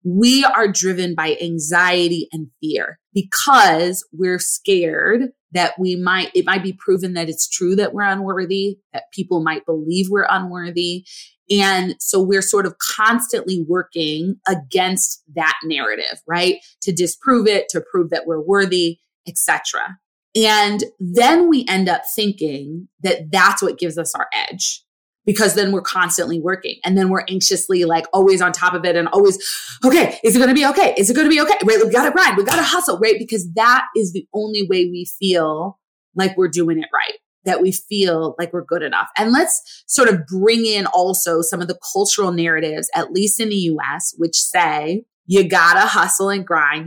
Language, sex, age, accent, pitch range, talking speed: English, female, 20-39, American, 170-205 Hz, 185 wpm